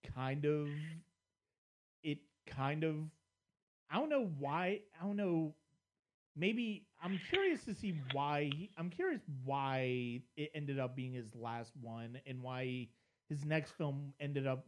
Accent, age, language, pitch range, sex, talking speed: American, 30-49, English, 130-155 Hz, male, 145 wpm